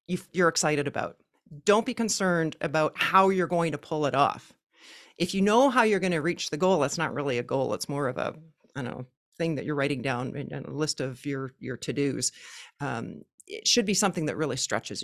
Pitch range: 145-190 Hz